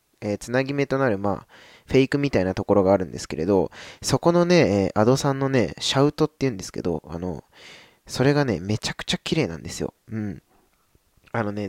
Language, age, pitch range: Japanese, 20-39, 100-140 Hz